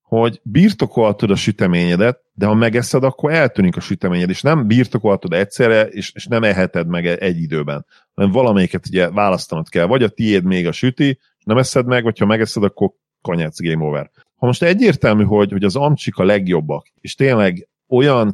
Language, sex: Hungarian, male